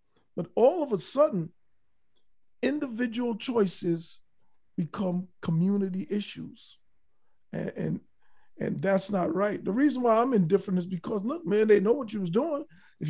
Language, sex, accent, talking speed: English, male, American, 140 wpm